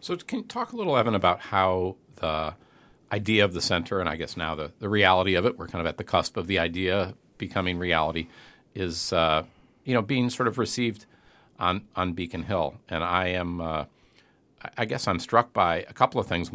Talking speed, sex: 215 wpm, male